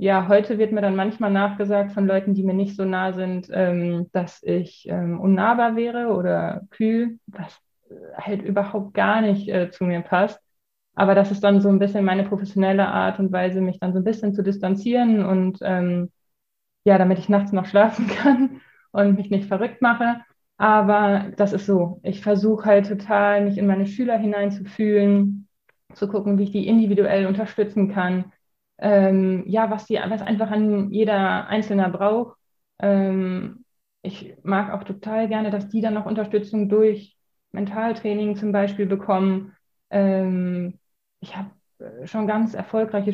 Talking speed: 160 wpm